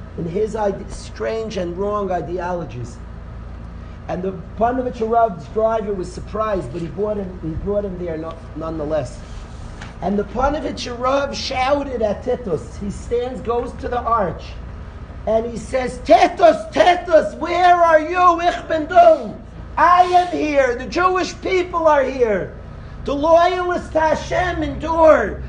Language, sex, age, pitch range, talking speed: English, male, 40-59, 190-300 Hz, 140 wpm